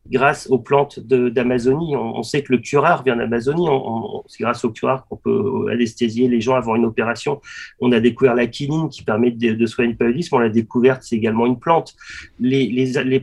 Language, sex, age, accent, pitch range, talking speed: French, male, 40-59, French, 125-145 Hz, 225 wpm